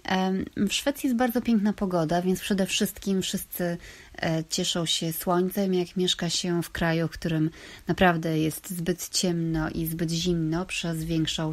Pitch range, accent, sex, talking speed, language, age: 165-195 Hz, native, female, 150 wpm, Polish, 30-49